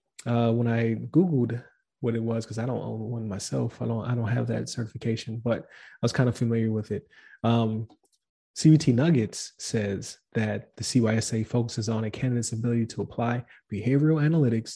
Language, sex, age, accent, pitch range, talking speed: English, male, 20-39, American, 115-130 Hz, 180 wpm